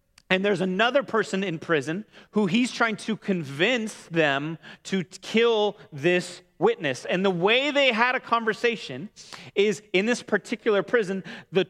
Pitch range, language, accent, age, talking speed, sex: 135-195 Hz, English, American, 30-49, 150 wpm, male